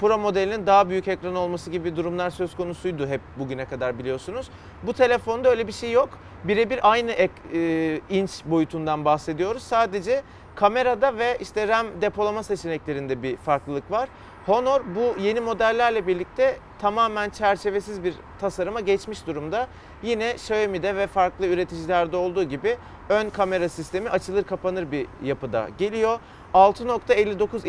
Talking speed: 140 wpm